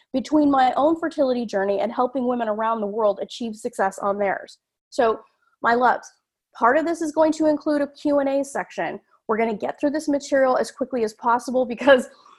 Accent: American